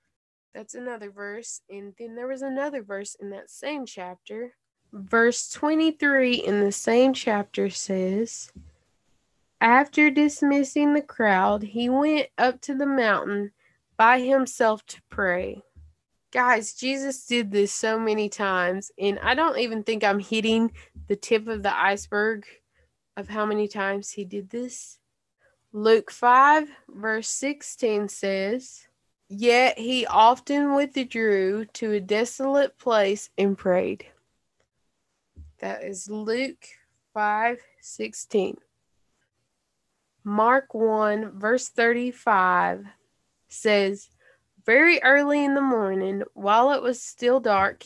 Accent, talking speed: American, 120 wpm